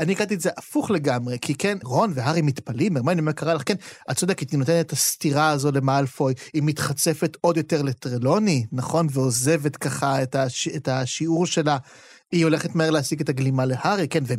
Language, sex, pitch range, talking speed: Hebrew, male, 140-185 Hz, 190 wpm